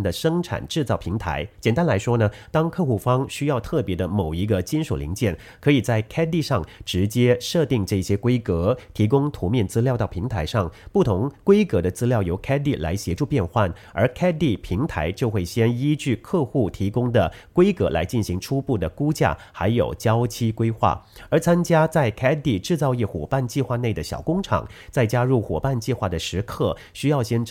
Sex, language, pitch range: male, English, 100-140 Hz